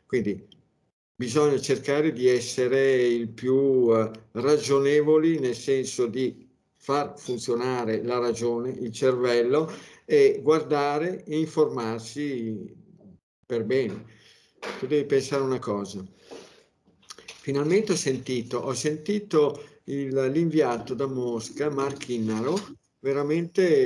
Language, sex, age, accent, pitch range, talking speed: Italian, male, 50-69, native, 120-165 Hz, 95 wpm